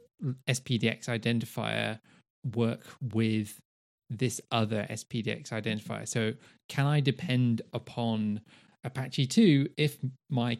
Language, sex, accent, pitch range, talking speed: English, male, British, 115-145 Hz, 95 wpm